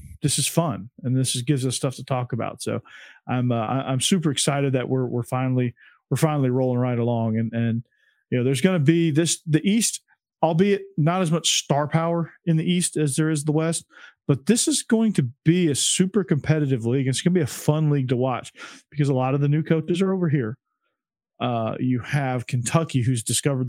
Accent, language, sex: American, English, male